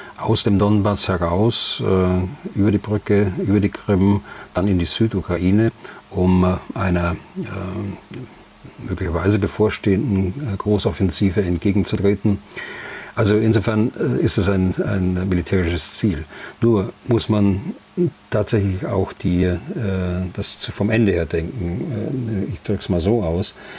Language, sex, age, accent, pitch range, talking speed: German, male, 40-59, German, 90-110 Hz, 115 wpm